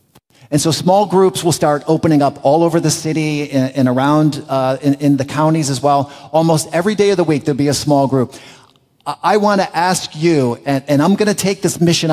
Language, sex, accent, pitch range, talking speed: English, male, American, 120-150 Hz, 230 wpm